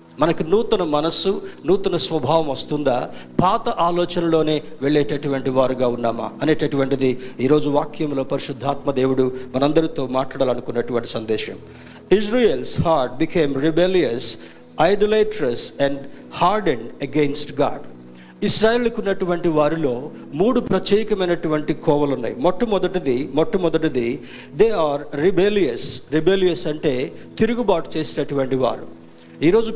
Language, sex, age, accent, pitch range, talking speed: Telugu, male, 50-69, native, 135-190 Hz, 90 wpm